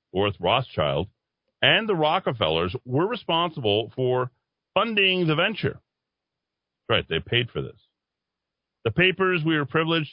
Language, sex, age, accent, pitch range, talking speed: English, male, 40-59, American, 90-140 Hz, 130 wpm